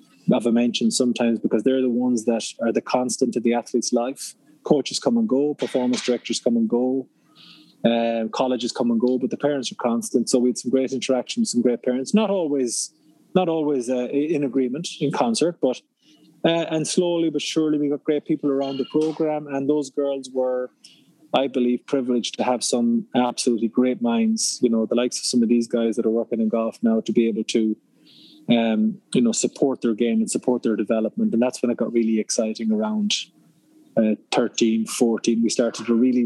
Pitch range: 115-150 Hz